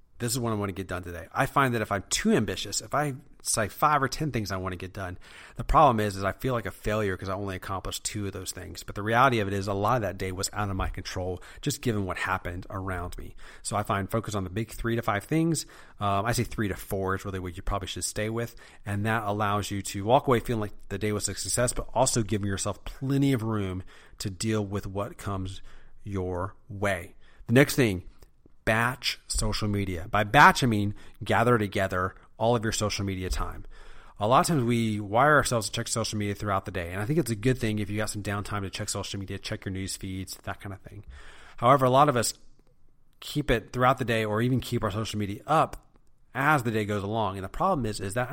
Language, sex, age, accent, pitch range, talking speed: English, male, 30-49, American, 95-115 Hz, 255 wpm